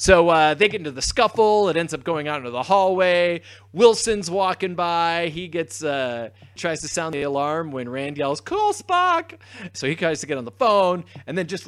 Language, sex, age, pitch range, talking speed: English, male, 30-49, 100-170 Hz, 215 wpm